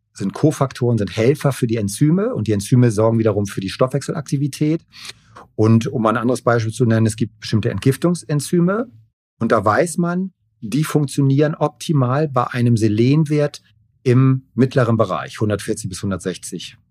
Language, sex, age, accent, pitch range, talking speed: German, male, 40-59, German, 110-135 Hz, 145 wpm